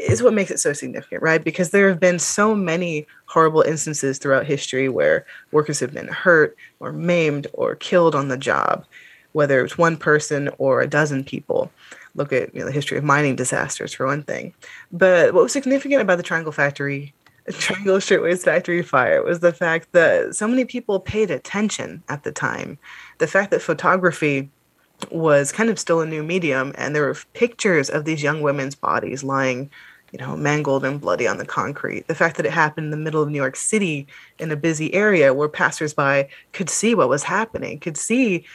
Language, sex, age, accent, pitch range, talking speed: English, female, 20-39, American, 145-185 Hz, 200 wpm